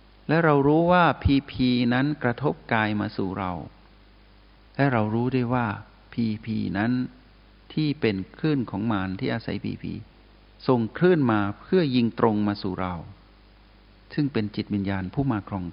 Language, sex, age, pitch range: Thai, male, 60-79, 105-130 Hz